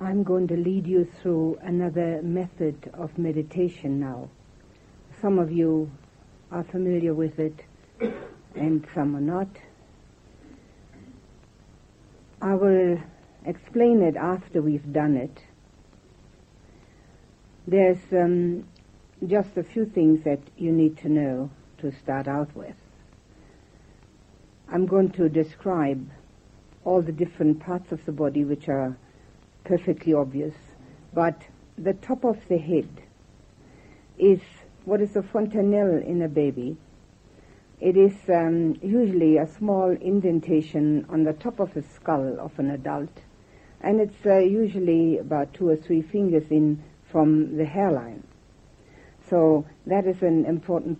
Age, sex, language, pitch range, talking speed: 60-79, female, English, 145-185 Hz, 125 wpm